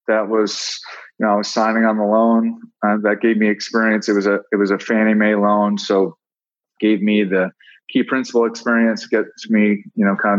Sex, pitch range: male, 105-120 Hz